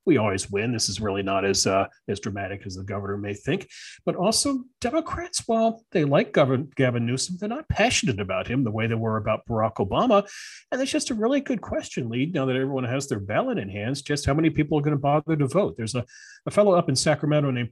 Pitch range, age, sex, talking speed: 110-155 Hz, 40-59, male, 240 wpm